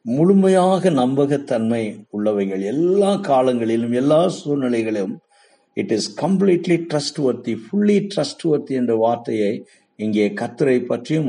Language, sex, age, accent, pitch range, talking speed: Tamil, male, 50-69, native, 110-155 Hz, 105 wpm